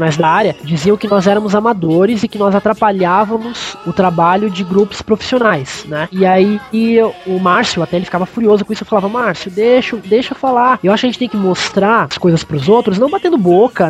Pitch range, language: 175-220 Hz, Portuguese